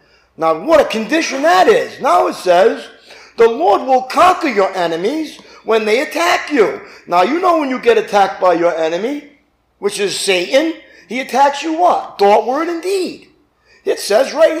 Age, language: 50-69, English